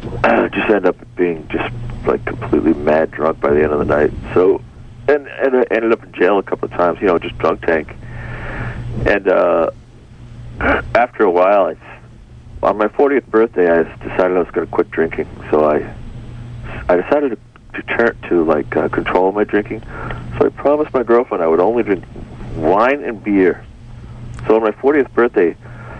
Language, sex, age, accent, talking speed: English, male, 60-79, American, 185 wpm